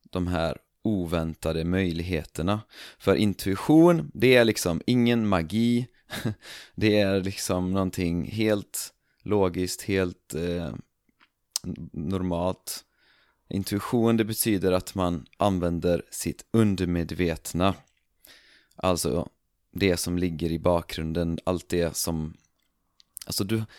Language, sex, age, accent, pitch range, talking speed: Swedish, male, 30-49, native, 85-110 Hz, 95 wpm